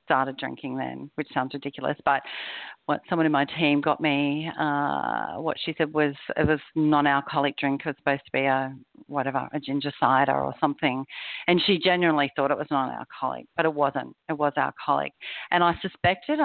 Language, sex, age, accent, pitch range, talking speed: English, female, 40-59, Australian, 140-170 Hz, 195 wpm